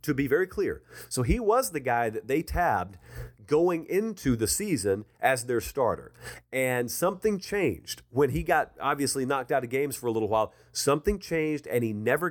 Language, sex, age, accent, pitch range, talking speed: English, male, 40-59, American, 115-150 Hz, 190 wpm